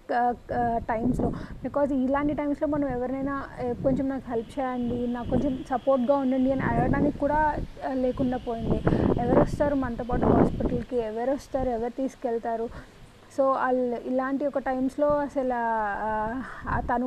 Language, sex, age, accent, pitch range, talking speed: Telugu, female, 30-49, native, 240-270 Hz, 110 wpm